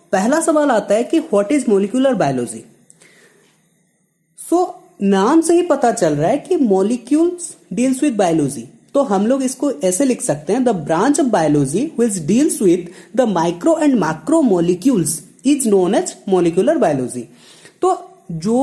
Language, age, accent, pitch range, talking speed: Hindi, 30-49, native, 185-295 Hz, 110 wpm